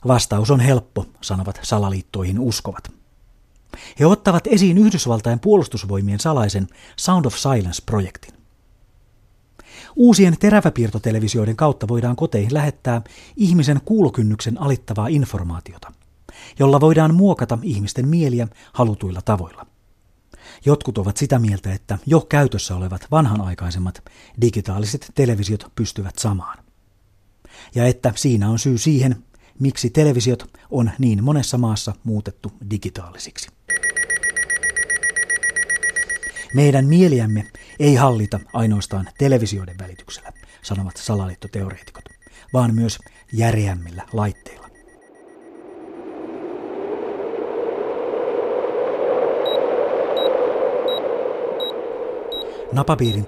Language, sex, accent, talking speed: Finnish, male, native, 80 wpm